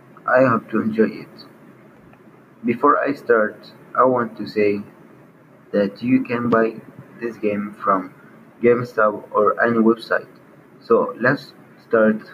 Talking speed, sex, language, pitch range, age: 125 wpm, male, English, 110-135 Hz, 30-49